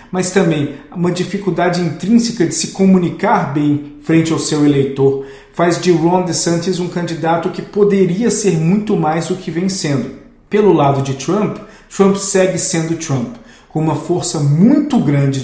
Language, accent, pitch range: Portuguese, Brazilian, 150-185 Hz